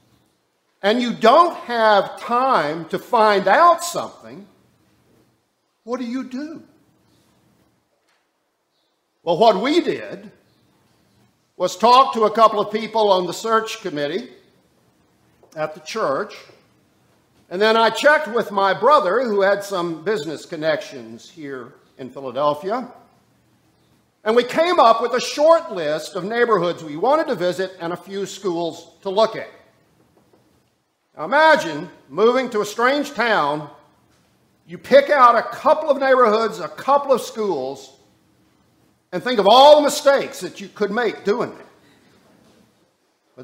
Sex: male